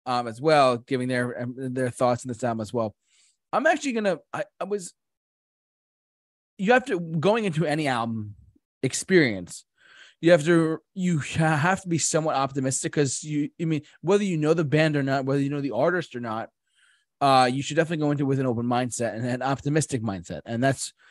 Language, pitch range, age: English, 130-175 Hz, 20-39